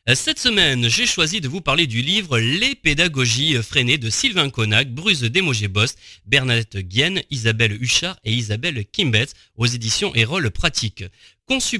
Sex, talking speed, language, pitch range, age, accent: male, 155 wpm, French, 115-180 Hz, 30-49, French